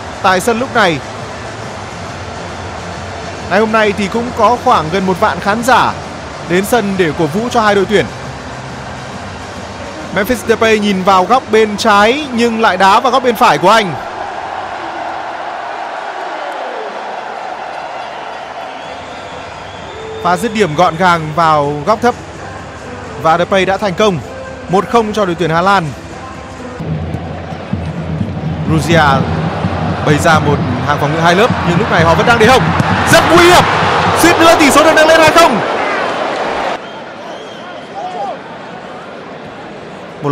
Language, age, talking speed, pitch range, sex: Vietnamese, 20-39, 135 wpm, 145-225 Hz, male